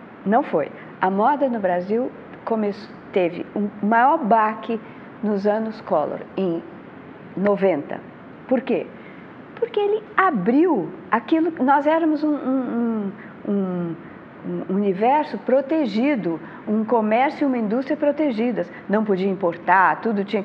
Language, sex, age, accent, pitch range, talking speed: English, female, 50-69, Brazilian, 190-265 Hz, 115 wpm